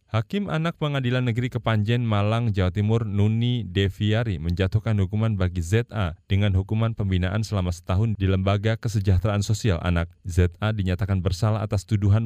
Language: Indonesian